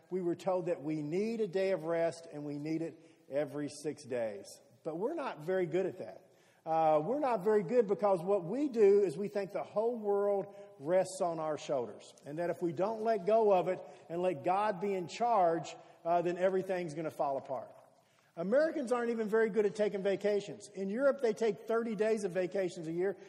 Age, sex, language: 50-69, male, English